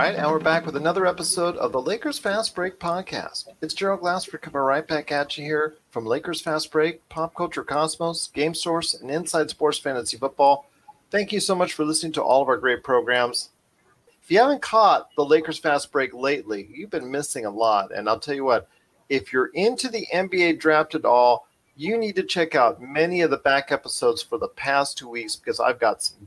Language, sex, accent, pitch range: English, male, American, 135-170 Hz